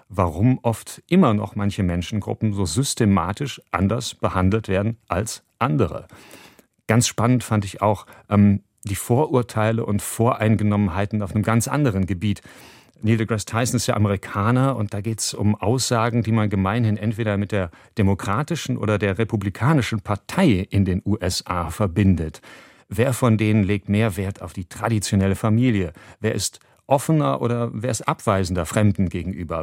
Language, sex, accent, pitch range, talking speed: German, male, German, 100-120 Hz, 150 wpm